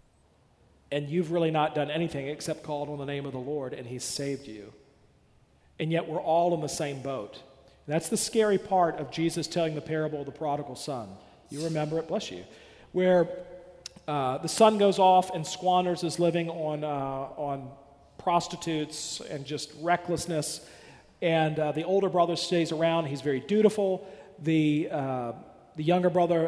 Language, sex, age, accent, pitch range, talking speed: English, male, 40-59, American, 150-180 Hz, 175 wpm